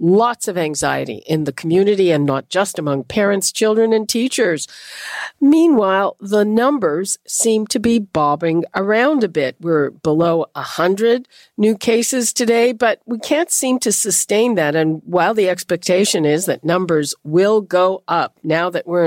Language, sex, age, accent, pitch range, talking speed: English, female, 50-69, American, 170-230 Hz, 155 wpm